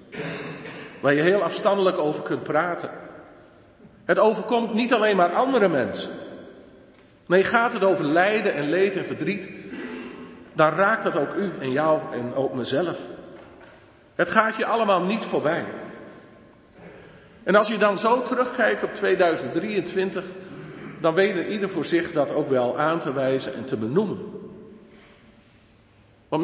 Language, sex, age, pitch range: Dutch, male, 50-69, 145-195 Hz